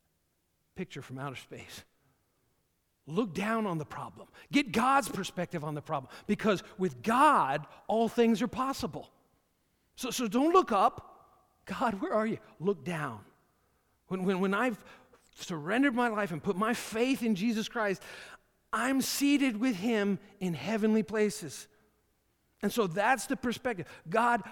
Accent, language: American, English